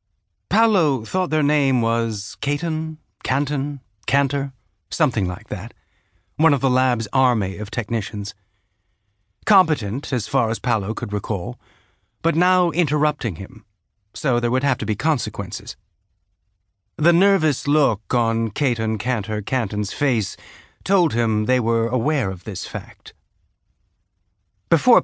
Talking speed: 125 wpm